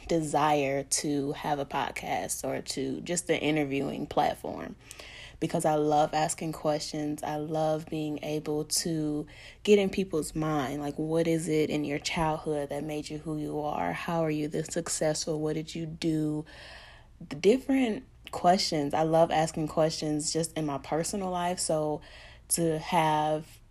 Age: 20-39